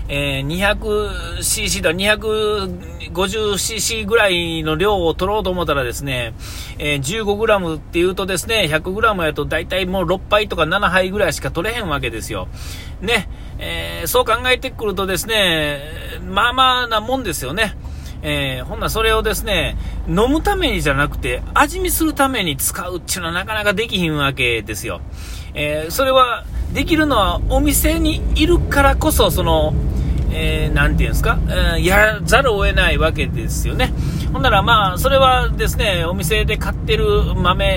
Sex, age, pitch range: male, 40-59, 140-220 Hz